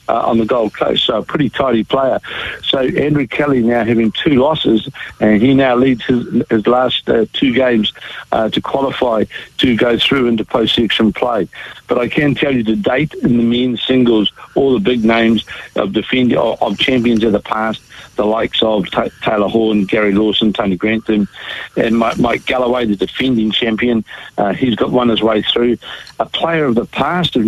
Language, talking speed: English, 195 wpm